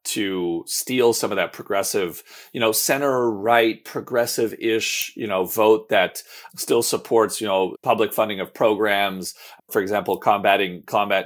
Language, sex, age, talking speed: English, male, 30-49, 140 wpm